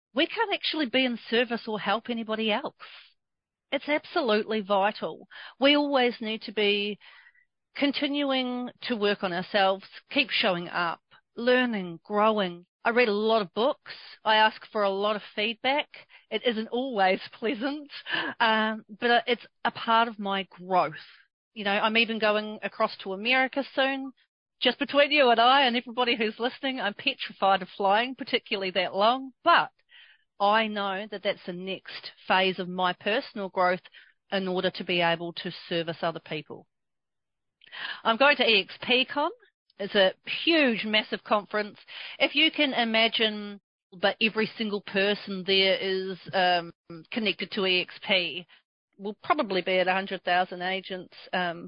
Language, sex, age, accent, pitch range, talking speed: English, female, 40-59, Australian, 190-250 Hz, 150 wpm